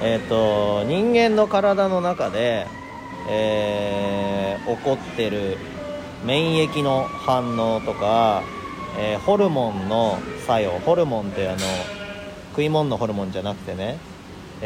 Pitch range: 105-160 Hz